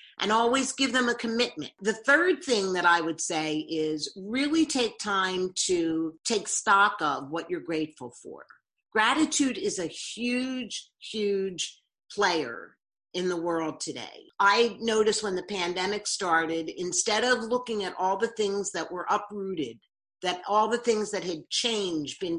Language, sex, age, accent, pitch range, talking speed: English, female, 50-69, American, 180-235 Hz, 160 wpm